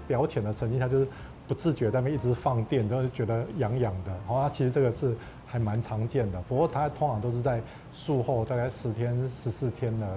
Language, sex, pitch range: Chinese, male, 115-135 Hz